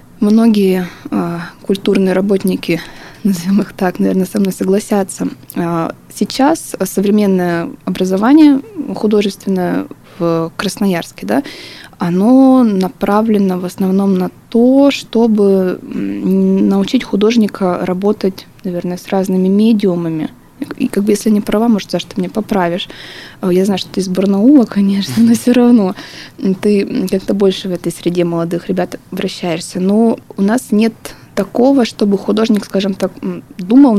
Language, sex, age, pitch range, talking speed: Russian, female, 20-39, 185-220 Hz, 130 wpm